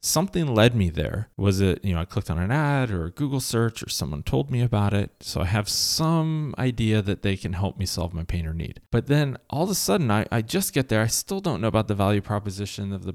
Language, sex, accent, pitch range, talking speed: English, male, American, 95-120 Hz, 270 wpm